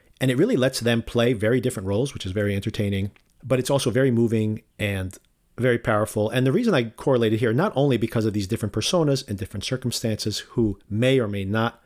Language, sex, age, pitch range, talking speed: English, male, 40-59, 105-130 Hz, 215 wpm